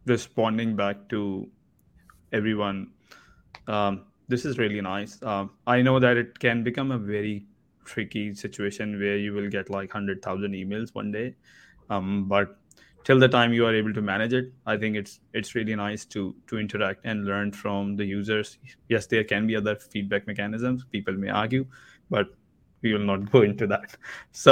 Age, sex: 20-39, male